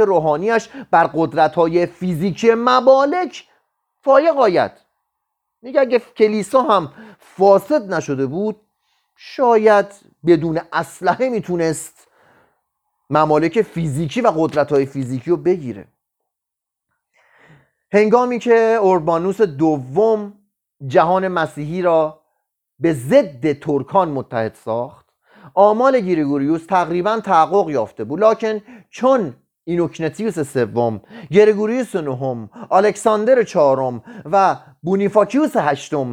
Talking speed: 90 wpm